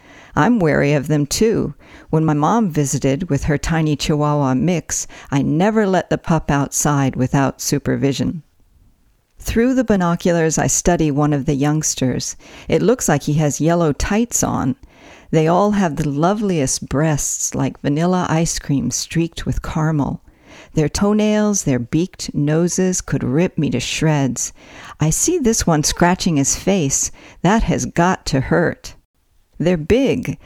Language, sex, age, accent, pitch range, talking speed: English, female, 50-69, American, 140-180 Hz, 150 wpm